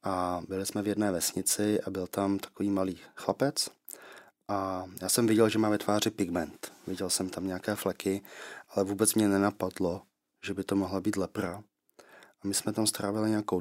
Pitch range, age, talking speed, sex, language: 95-105 Hz, 20-39, 185 wpm, male, Slovak